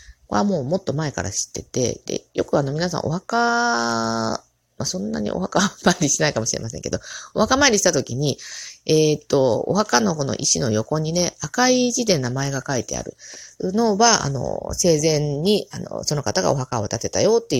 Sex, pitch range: female, 115-175 Hz